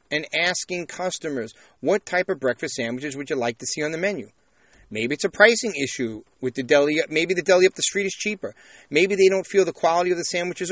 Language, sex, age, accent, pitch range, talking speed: English, male, 40-59, American, 135-185 Hz, 230 wpm